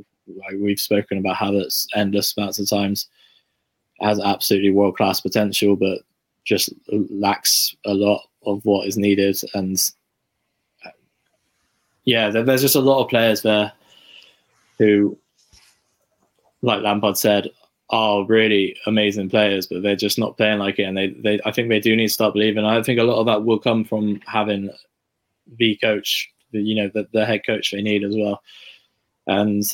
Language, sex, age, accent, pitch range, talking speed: English, male, 20-39, British, 100-110 Hz, 165 wpm